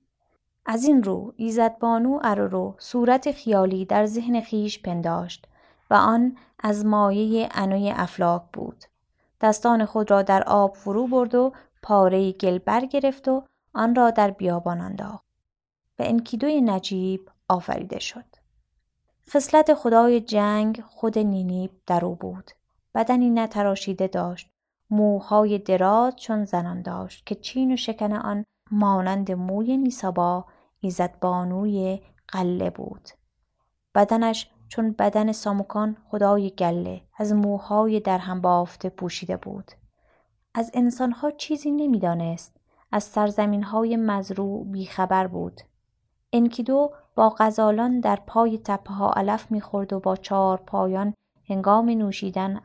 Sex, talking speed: female, 120 wpm